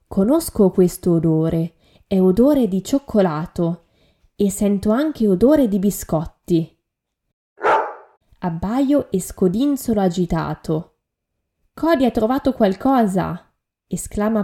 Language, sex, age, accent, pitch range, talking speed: Italian, female, 20-39, native, 175-235 Hz, 90 wpm